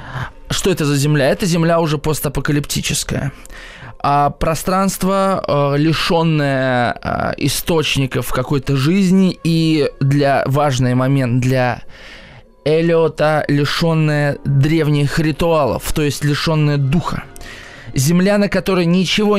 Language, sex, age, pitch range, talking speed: Russian, male, 20-39, 135-175 Hz, 95 wpm